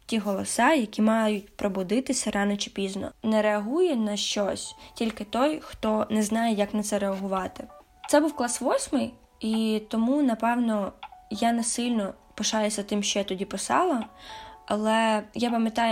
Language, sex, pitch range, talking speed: Ukrainian, female, 200-235 Hz, 150 wpm